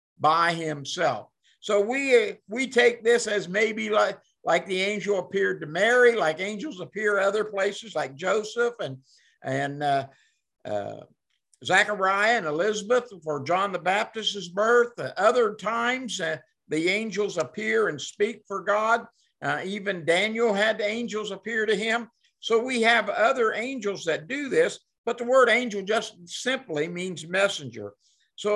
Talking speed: 150 wpm